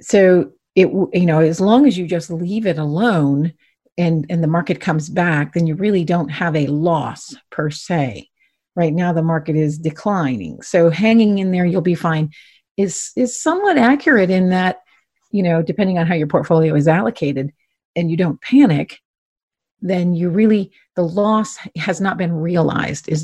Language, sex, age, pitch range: English, female, 40-59, 155-190 Hz